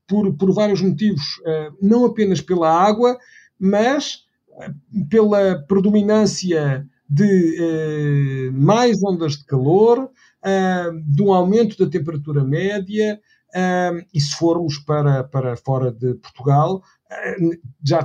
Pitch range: 145-205 Hz